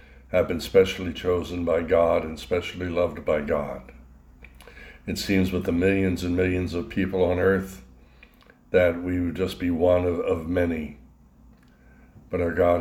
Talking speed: 160 wpm